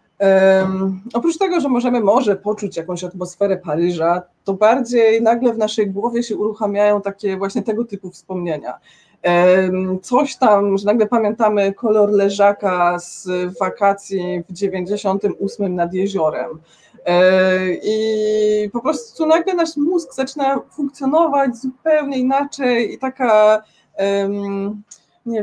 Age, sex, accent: 20-39, female, native